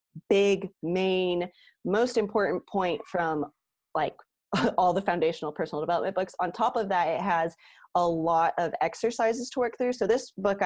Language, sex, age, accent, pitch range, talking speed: English, female, 20-39, American, 165-200 Hz, 165 wpm